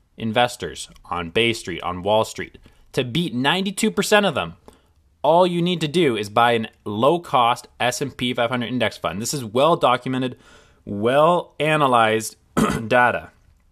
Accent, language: American, English